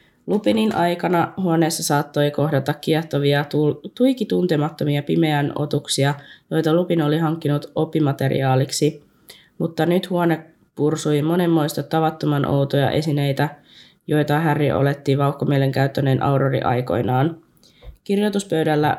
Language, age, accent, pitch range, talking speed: Finnish, 20-39, native, 140-165 Hz, 90 wpm